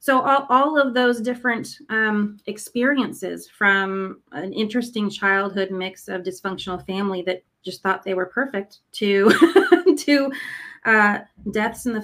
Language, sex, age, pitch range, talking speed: English, female, 30-49, 180-210 Hz, 140 wpm